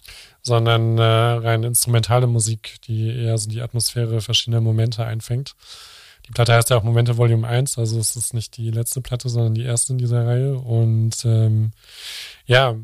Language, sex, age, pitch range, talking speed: German, male, 20-39, 110-120 Hz, 175 wpm